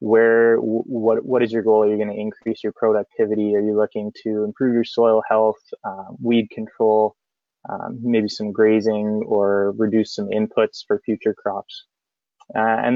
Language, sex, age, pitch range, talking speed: English, male, 20-39, 105-125 Hz, 165 wpm